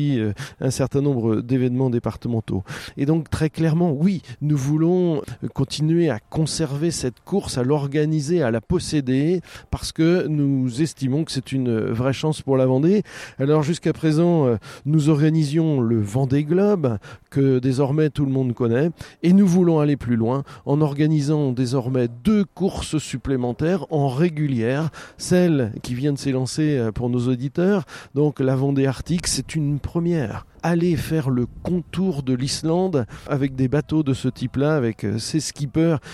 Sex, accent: male, French